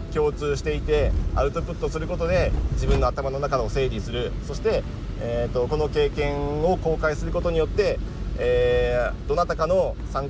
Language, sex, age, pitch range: Japanese, male, 40-59, 100-140 Hz